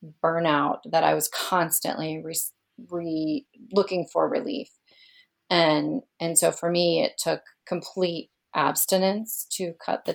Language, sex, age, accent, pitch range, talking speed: English, female, 30-49, American, 160-205 Hz, 130 wpm